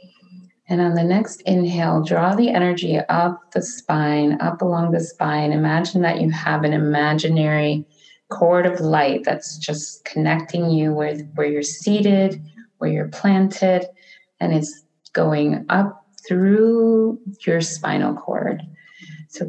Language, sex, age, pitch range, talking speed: English, female, 30-49, 155-200 Hz, 135 wpm